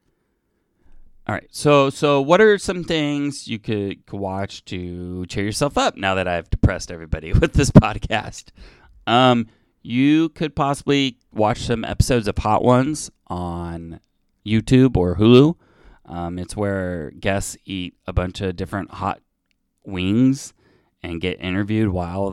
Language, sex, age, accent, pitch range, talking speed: English, male, 30-49, American, 90-115 Hz, 140 wpm